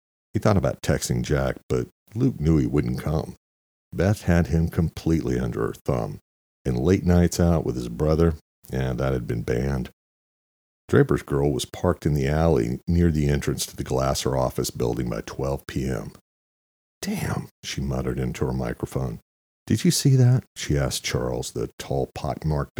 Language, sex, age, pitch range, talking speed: English, male, 50-69, 65-90 Hz, 170 wpm